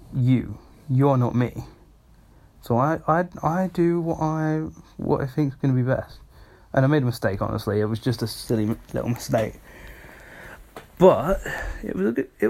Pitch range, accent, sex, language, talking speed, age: 110-150 Hz, British, male, English, 165 wpm, 10-29